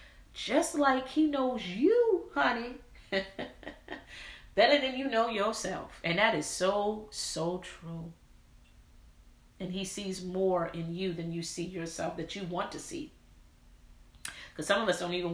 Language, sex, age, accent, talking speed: English, female, 30-49, American, 150 wpm